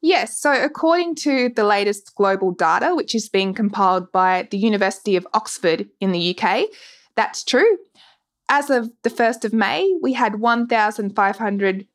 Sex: female